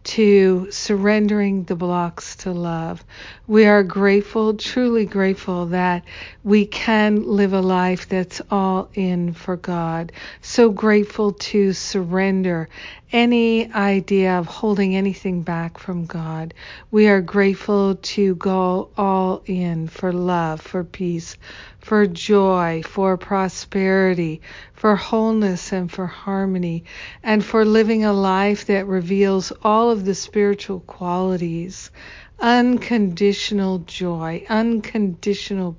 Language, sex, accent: English, female, American